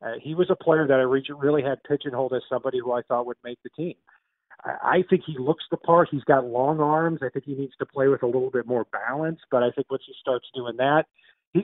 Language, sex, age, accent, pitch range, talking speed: English, male, 40-59, American, 125-160 Hz, 265 wpm